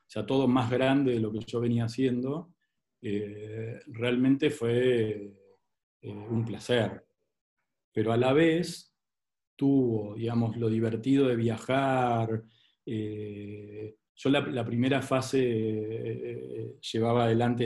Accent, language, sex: Argentinian, Spanish, male